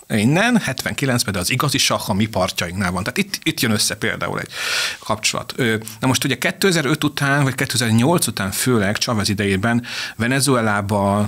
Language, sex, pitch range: Hungarian, male, 110-135 Hz